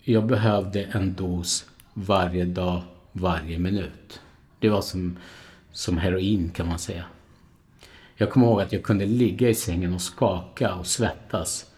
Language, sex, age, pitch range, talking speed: Swedish, male, 50-69, 90-115 Hz, 150 wpm